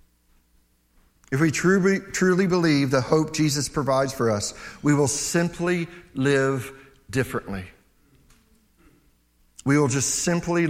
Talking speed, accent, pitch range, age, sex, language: 105 wpm, American, 110-175 Hz, 50-69, male, English